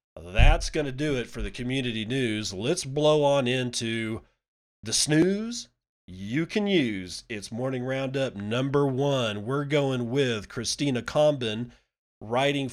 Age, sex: 40-59, male